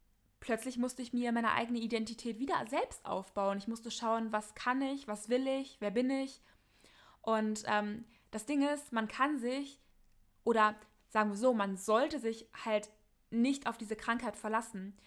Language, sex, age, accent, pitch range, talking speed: German, female, 20-39, German, 220-260 Hz, 170 wpm